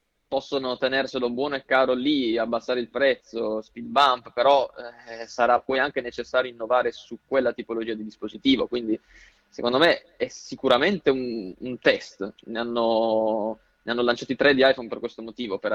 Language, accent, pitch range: Italian, native, 115-135 Hz